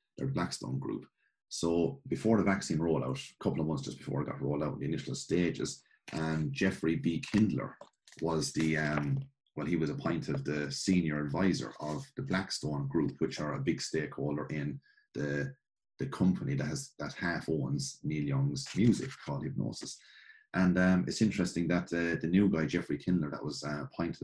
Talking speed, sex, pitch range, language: 185 wpm, male, 75-110 Hz, English